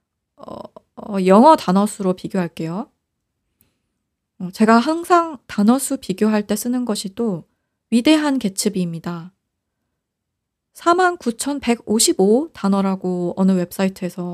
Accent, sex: native, female